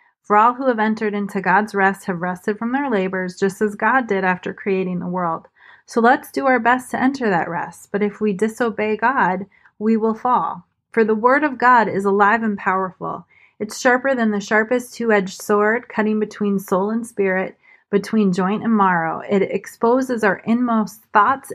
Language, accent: English, American